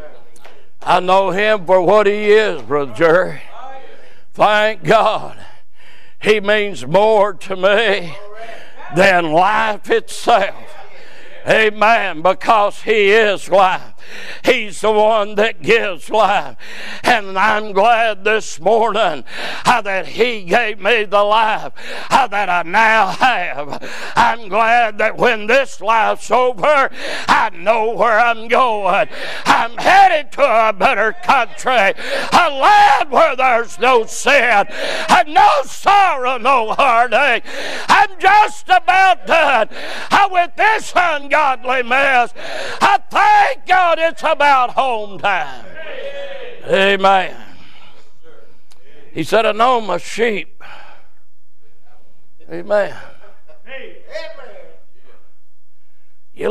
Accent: American